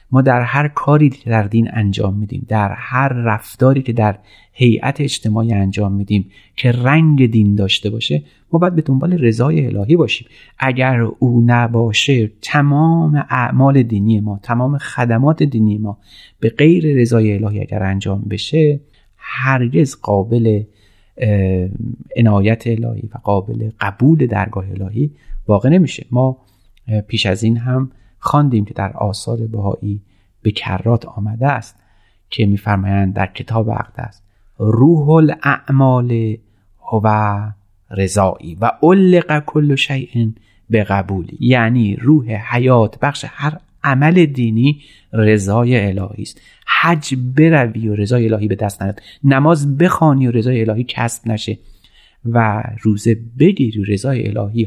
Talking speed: 135 wpm